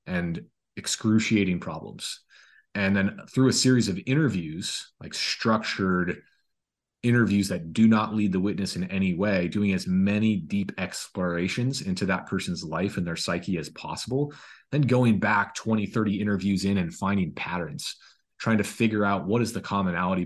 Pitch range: 95-110 Hz